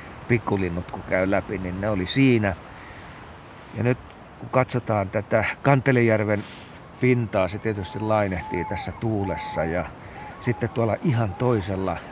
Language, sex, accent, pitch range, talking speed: Finnish, male, native, 95-115 Hz, 125 wpm